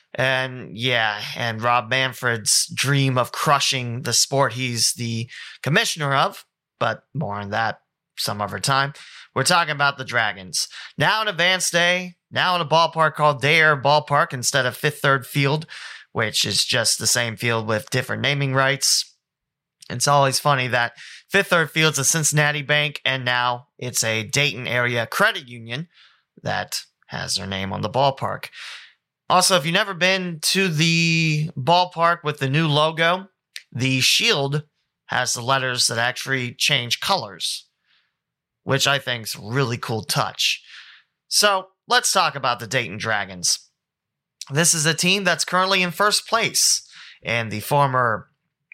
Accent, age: American, 30-49